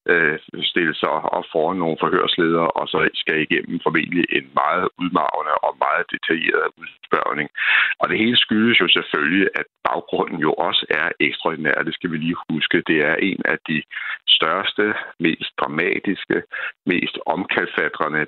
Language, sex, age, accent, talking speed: Danish, male, 60-79, native, 150 wpm